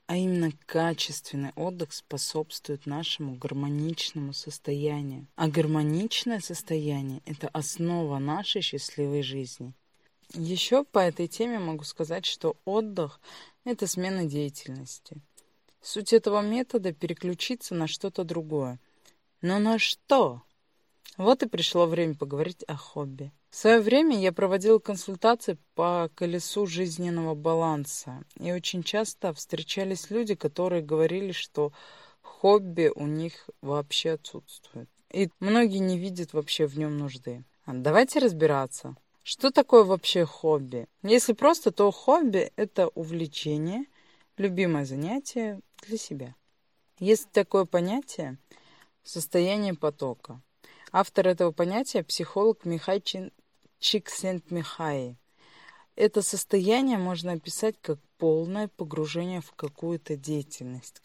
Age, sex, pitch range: 20-39, female, 150-195 Hz